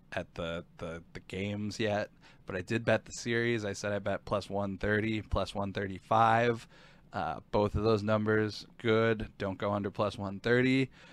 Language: English